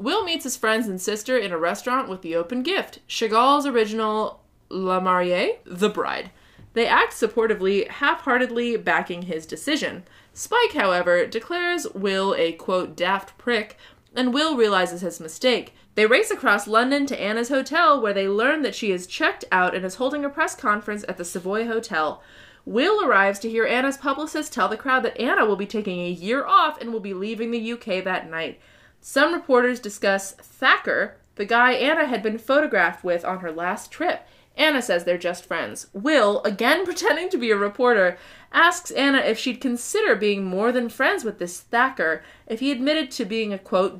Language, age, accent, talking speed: English, 20-39, American, 185 wpm